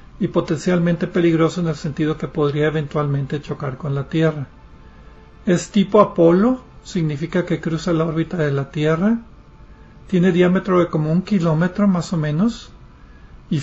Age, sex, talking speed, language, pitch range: 40-59, male, 150 wpm, Spanish, 150-180 Hz